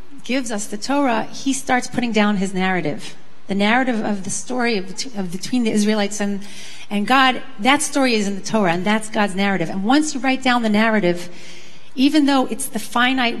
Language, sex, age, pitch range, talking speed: English, female, 40-59, 200-250 Hz, 195 wpm